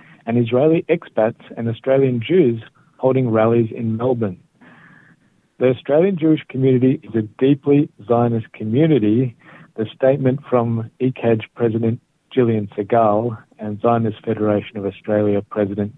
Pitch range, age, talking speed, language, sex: 110-130 Hz, 50-69, 120 wpm, English, male